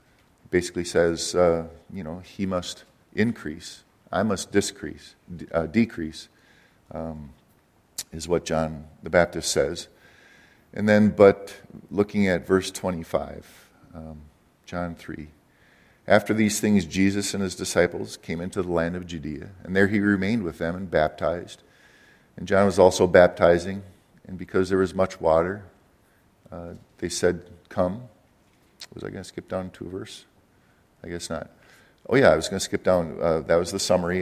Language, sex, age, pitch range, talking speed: English, male, 50-69, 85-100 Hz, 160 wpm